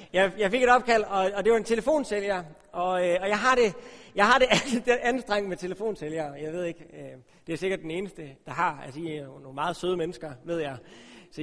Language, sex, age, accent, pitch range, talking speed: Danish, male, 30-49, native, 160-215 Hz, 220 wpm